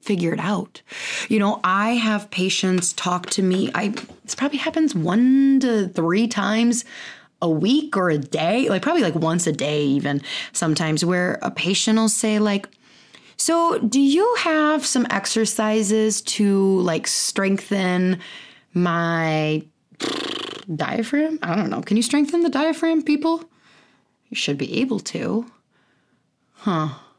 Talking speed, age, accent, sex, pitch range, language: 140 wpm, 20-39, American, female, 180-250 Hz, English